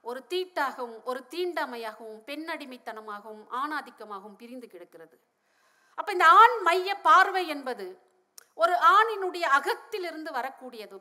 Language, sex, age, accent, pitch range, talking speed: Tamil, female, 50-69, native, 285-375 Hz, 60 wpm